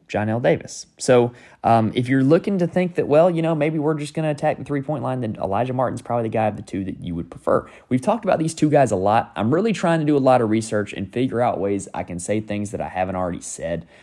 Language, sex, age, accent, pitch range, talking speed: English, male, 20-39, American, 100-130 Hz, 280 wpm